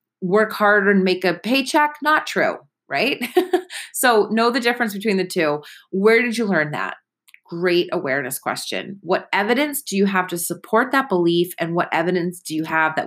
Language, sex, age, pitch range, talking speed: English, female, 30-49, 175-235 Hz, 185 wpm